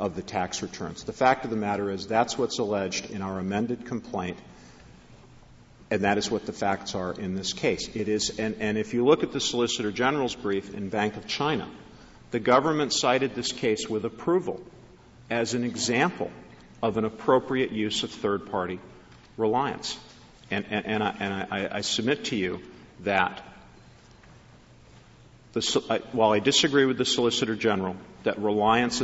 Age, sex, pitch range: 50-69, male, 100-130 Hz